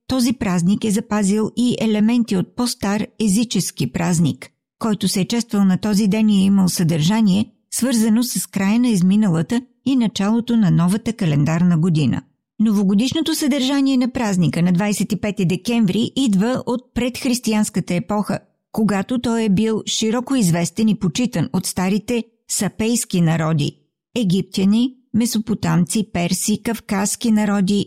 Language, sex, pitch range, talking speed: Bulgarian, female, 185-230 Hz, 130 wpm